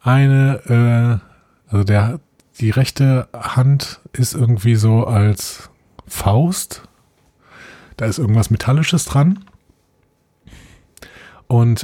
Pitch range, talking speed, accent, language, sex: 95-125 Hz, 90 wpm, German, German, male